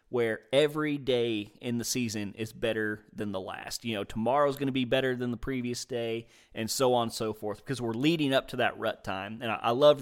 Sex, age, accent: male, 30-49, American